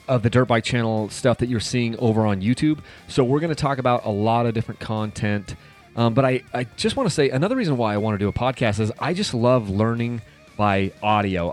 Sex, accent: male, American